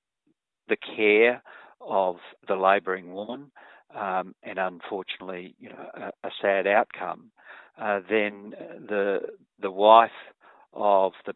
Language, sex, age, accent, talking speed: English, male, 50-69, Australian, 115 wpm